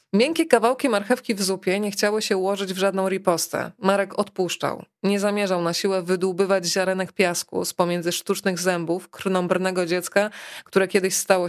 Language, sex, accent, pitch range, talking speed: Polish, female, native, 185-215 Hz, 155 wpm